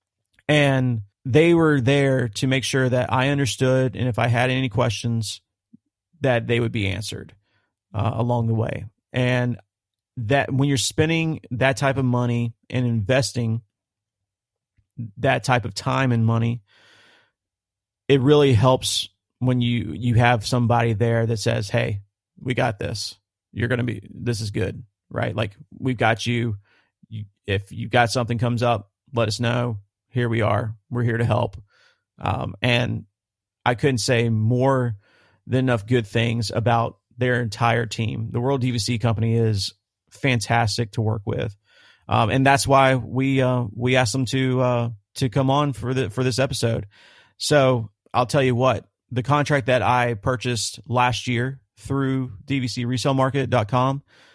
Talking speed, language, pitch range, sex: 155 wpm, English, 110-130 Hz, male